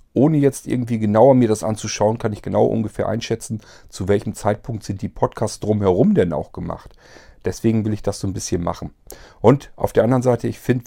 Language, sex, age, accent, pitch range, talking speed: German, male, 40-59, German, 95-120 Hz, 205 wpm